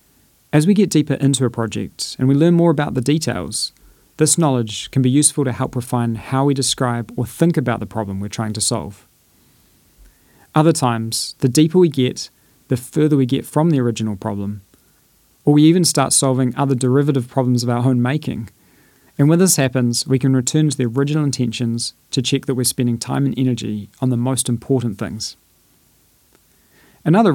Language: English